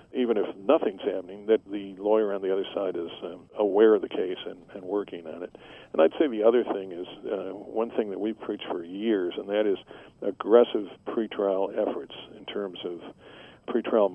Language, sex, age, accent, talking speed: English, male, 50-69, American, 200 wpm